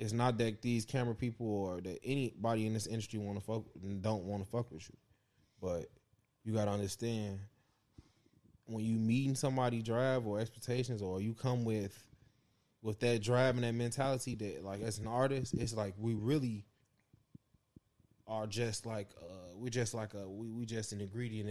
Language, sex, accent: English, male, American